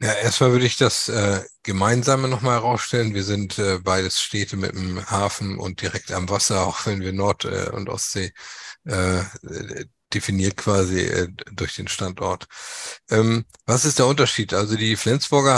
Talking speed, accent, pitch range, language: 165 wpm, German, 100-120 Hz, German